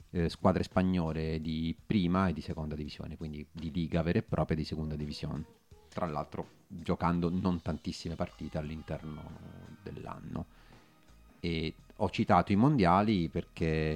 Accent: native